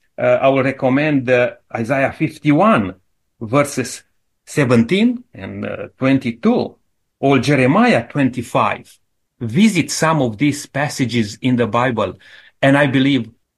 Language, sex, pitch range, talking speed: English, male, 125-175 Hz, 115 wpm